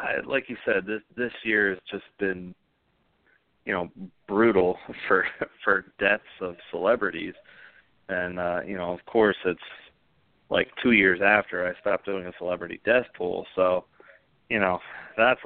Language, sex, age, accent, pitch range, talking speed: English, male, 30-49, American, 90-105 Hz, 155 wpm